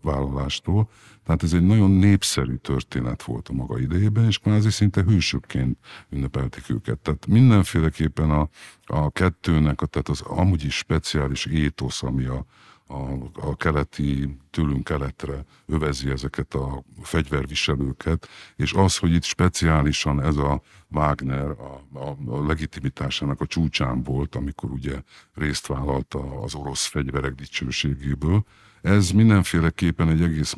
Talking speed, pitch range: 130 wpm, 70-85 Hz